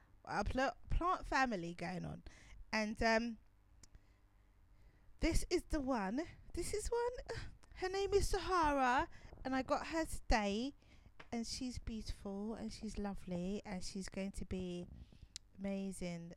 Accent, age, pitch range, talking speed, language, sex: British, 20-39, 180-255 Hz, 130 wpm, English, female